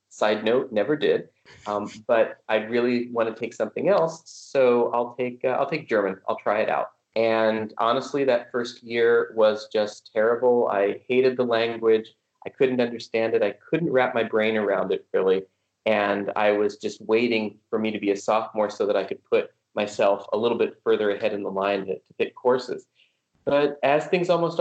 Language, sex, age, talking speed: English, male, 30-49, 195 wpm